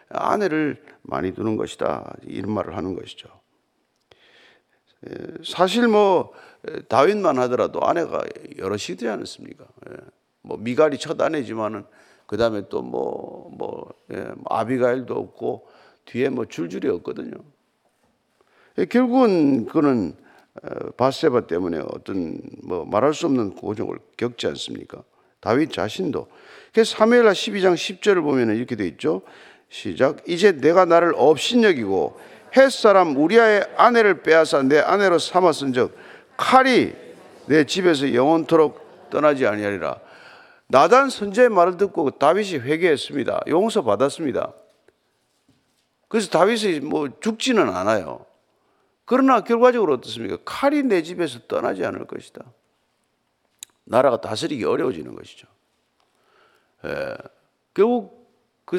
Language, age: Korean, 50-69